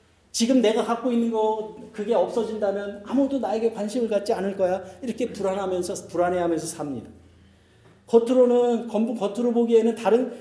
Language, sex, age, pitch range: Korean, male, 40-59, 175-240 Hz